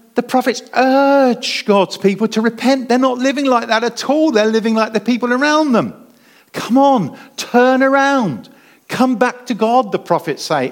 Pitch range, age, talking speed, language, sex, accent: 215-260 Hz, 50-69, 180 wpm, English, male, British